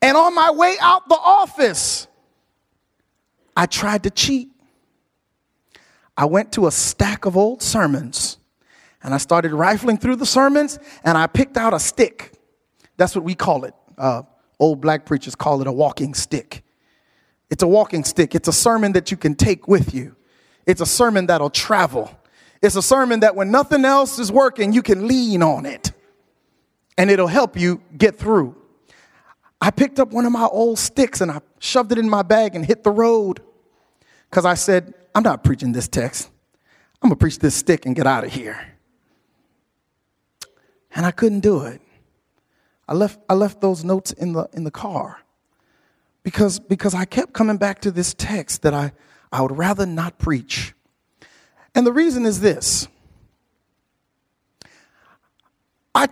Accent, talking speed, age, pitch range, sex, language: American, 170 wpm, 30-49, 165-240 Hz, male, English